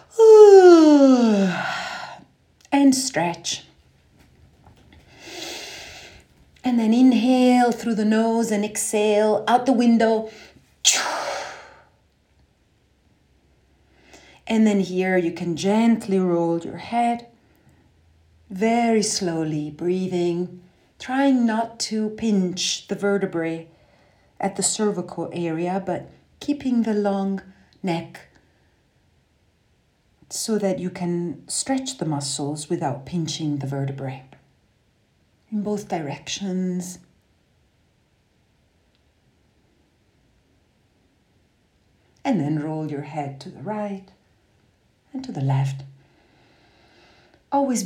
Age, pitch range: 40-59, 155-220 Hz